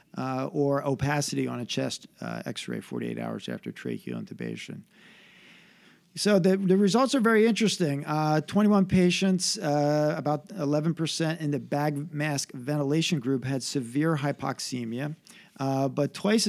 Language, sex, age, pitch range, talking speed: English, male, 50-69, 130-170 Hz, 140 wpm